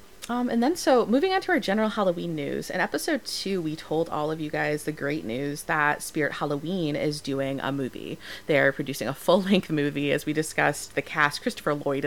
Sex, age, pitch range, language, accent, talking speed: female, 30-49, 135-170 Hz, English, American, 210 wpm